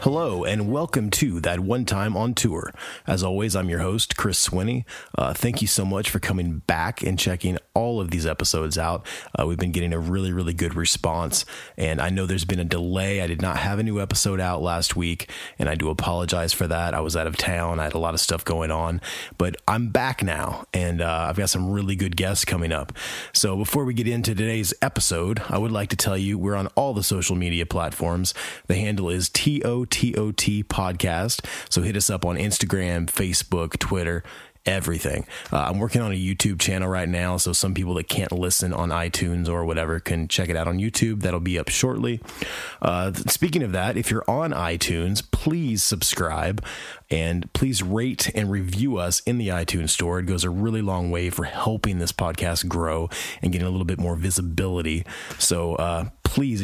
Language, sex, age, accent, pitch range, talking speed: English, male, 30-49, American, 85-105 Hz, 210 wpm